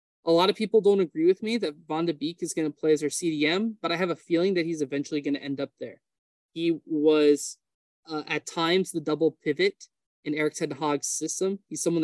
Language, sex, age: English, male, 20-39